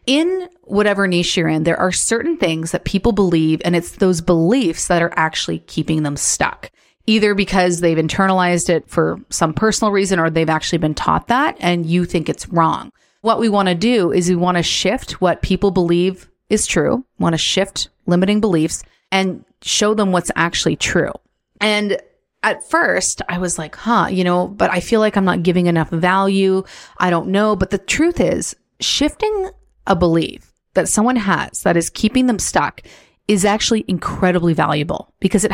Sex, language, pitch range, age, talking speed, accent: female, English, 170-210 Hz, 30-49, 185 wpm, American